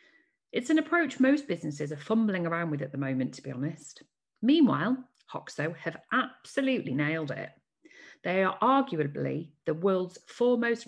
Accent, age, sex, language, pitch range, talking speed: British, 40-59, female, English, 150-220 Hz, 150 wpm